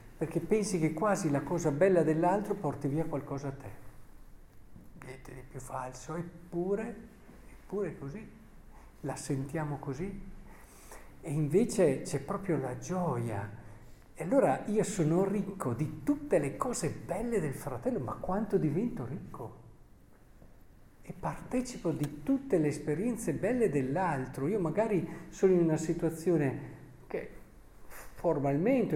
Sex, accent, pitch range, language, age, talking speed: male, native, 130-195 Hz, Italian, 50-69, 125 wpm